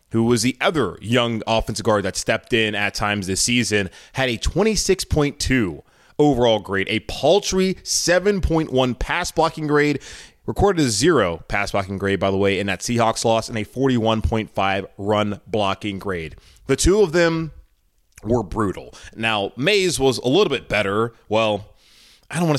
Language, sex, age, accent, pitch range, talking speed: English, male, 20-39, American, 110-160 Hz, 160 wpm